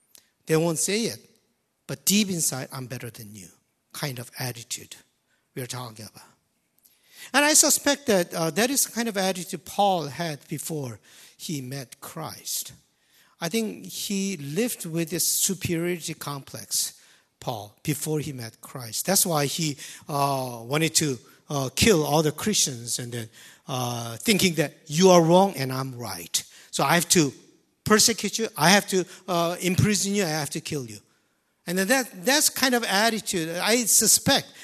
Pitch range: 140-205 Hz